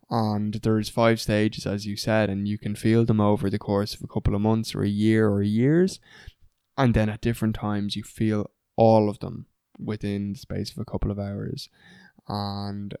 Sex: male